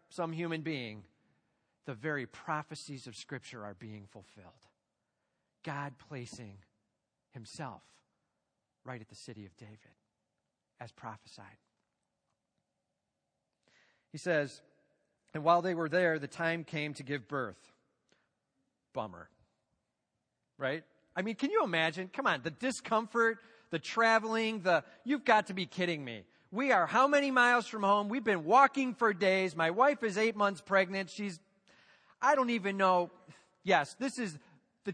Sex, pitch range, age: male, 135-205 Hz, 40-59